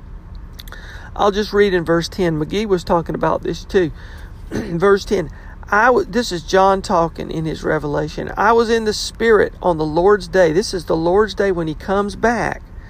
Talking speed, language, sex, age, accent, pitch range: 185 wpm, English, male, 40-59, American, 160-205 Hz